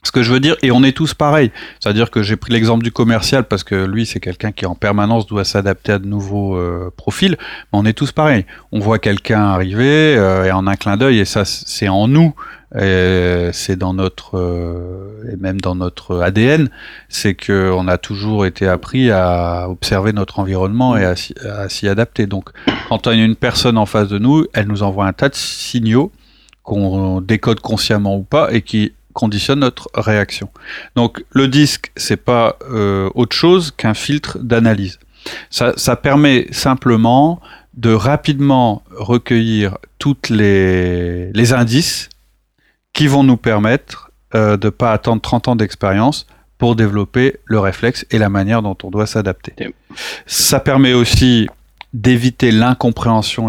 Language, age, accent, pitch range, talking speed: French, 30-49, French, 95-125 Hz, 175 wpm